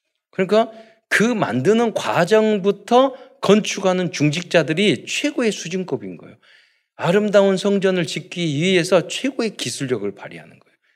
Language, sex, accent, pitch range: Korean, male, native, 145-215 Hz